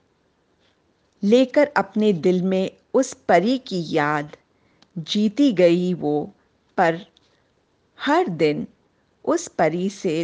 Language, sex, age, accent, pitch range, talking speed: Hindi, female, 50-69, native, 170-220 Hz, 100 wpm